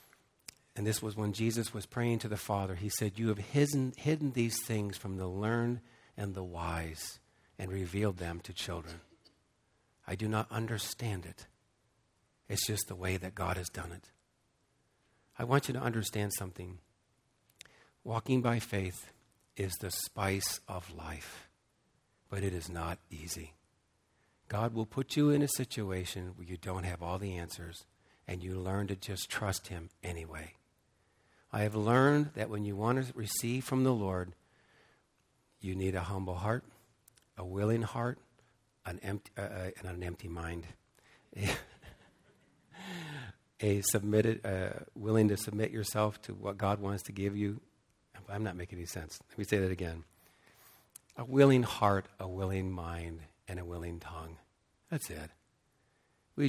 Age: 50-69